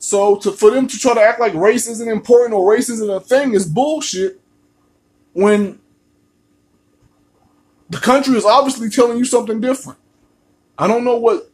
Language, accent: English, American